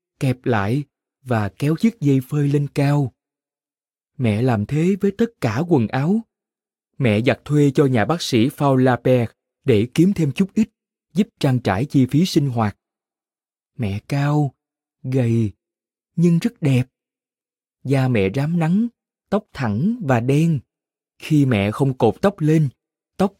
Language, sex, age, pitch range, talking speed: Vietnamese, male, 20-39, 125-180 Hz, 150 wpm